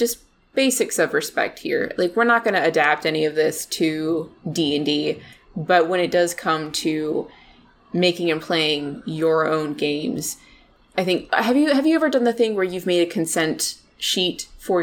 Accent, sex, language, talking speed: American, female, English, 190 wpm